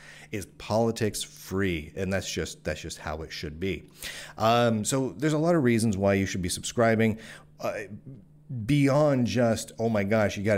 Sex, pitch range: male, 90-115 Hz